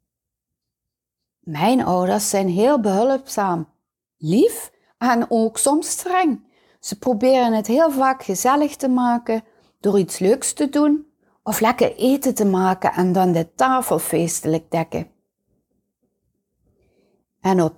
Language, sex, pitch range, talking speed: Dutch, female, 170-250 Hz, 120 wpm